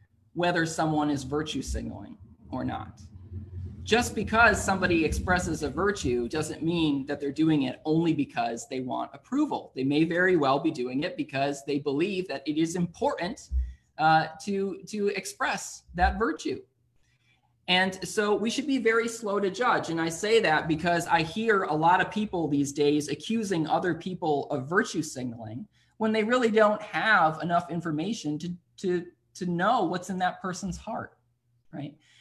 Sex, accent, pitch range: male, American, 135-190 Hz